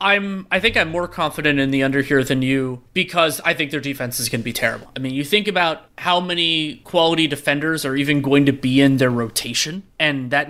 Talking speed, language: 235 wpm, English